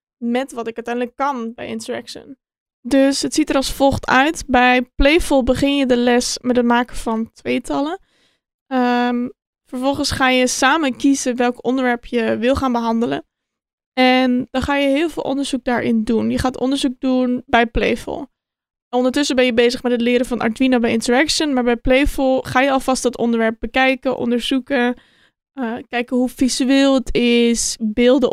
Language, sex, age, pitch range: Dutch, female, 20-39, 240-265 Hz